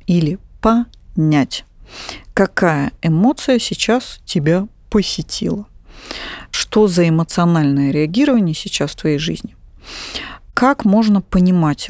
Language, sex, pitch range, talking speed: Russian, female, 165-220 Hz, 90 wpm